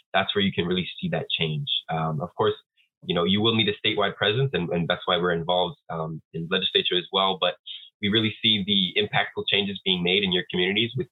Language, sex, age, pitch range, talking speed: English, male, 20-39, 90-125 Hz, 230 wpm